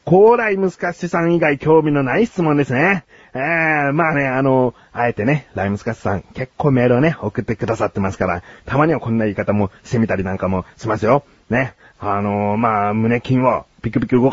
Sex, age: male, 40-59